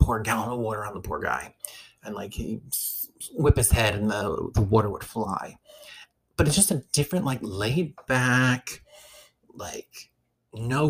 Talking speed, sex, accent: 170 wpm, male, American